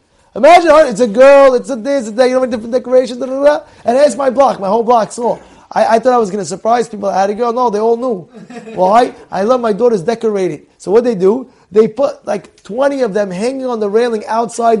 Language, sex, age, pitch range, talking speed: English, male, 20-39, 200-260 Hz, 245 wpm